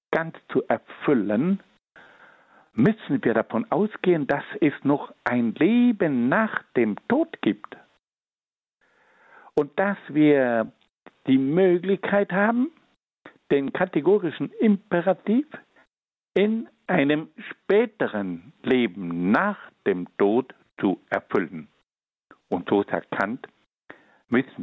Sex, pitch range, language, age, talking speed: male, 130-210 Hz, German, 60-79, 95 wpm